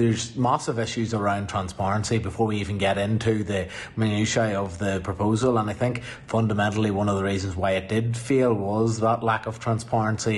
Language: English